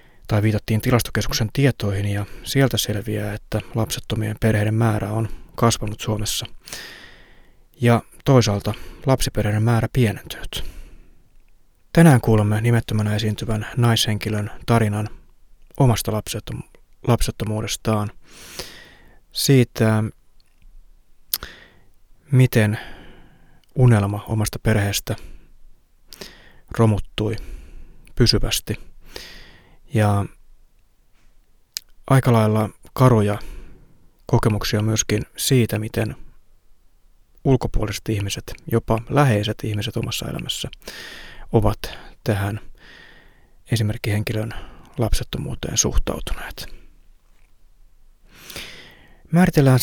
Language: Finnish